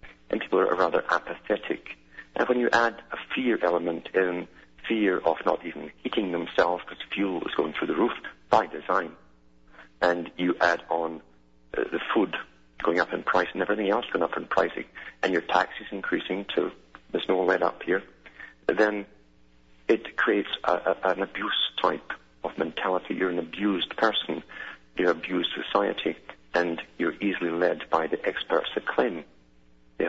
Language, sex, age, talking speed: English, male, 50-69, 165 wpm